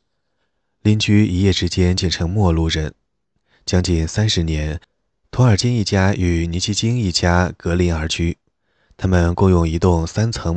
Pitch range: 85-100 Hz